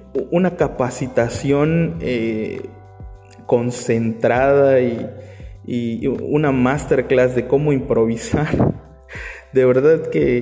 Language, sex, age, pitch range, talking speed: Spanish, male, 20-39, 120-155 Hz, 80 wpm